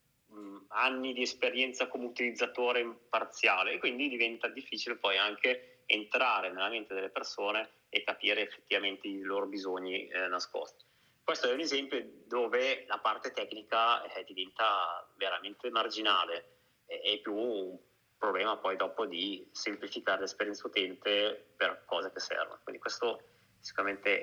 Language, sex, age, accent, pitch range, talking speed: Italian, male, 30-49, native, 110-155 Hz, 135 wpm